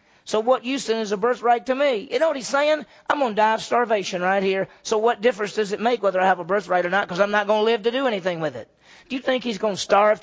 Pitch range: 180-235 Hz